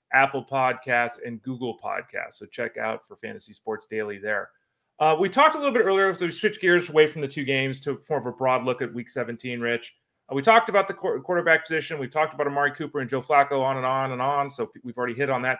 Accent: American